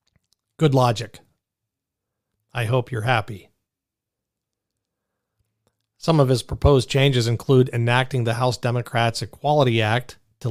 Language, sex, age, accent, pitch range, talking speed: English, male, 40-59, American, 110-135 Hz, 110 wpm